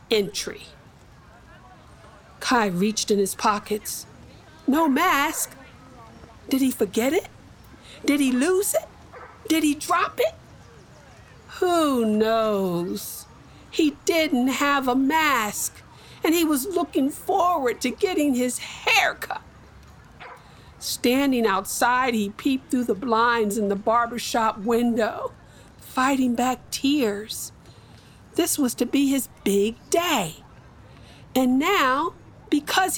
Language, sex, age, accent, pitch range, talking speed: English, female, 50-69, American, 225-305 Hz, 110 wpm